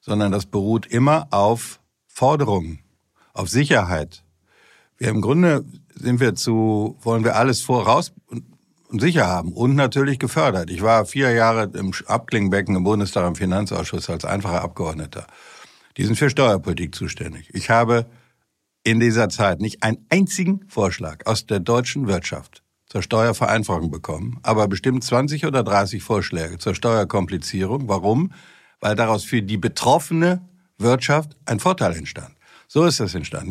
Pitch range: 100-125 Hz